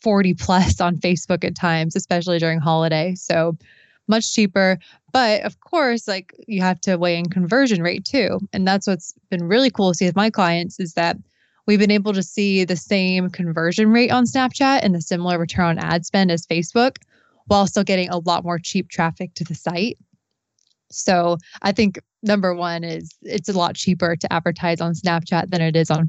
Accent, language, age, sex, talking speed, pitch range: American, English, 20-39, female, 200 wpm, 175-210 Hz